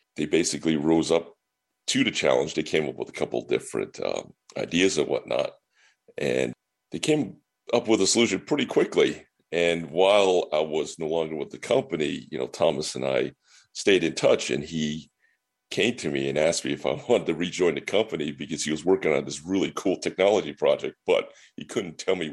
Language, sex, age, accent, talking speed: English, male, 40-59, American, 200 wpm